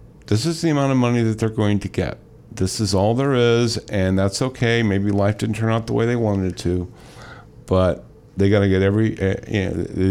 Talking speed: 230 wpm